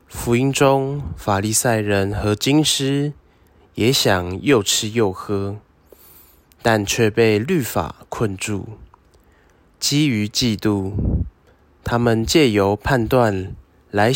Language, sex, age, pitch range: Chinese, male, 20-39, 85-115 Hz